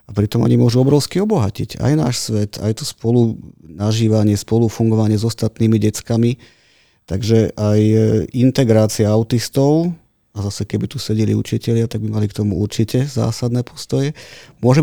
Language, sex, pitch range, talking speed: Slovak, male, 105-115 Hz, 145 wpm